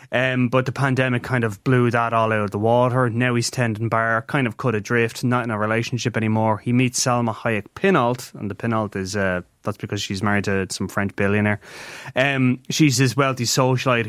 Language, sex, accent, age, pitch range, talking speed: English, male, Irish, 20-39, 110-135 Hz, 210 wpm